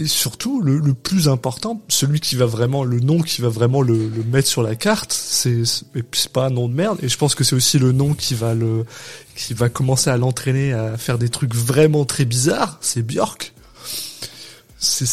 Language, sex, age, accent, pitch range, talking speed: French, male, 20-39, French, 115-145 Hz, 220 wpm